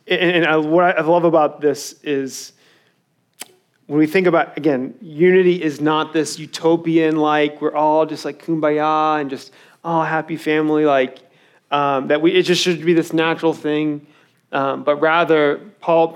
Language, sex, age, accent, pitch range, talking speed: English, male, 30-49, American, 155-215 Hz, 155 wpm